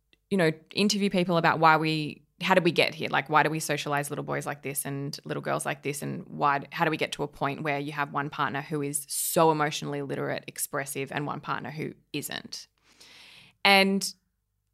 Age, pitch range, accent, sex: 20-39, 145-195 Hz, Australian, female